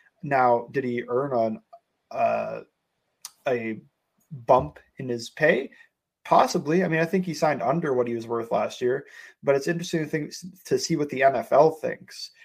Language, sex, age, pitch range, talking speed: English, male, 20-39, 120-165 Hz, 175 wpm